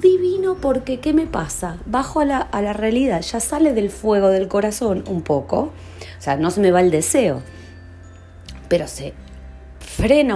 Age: 30-49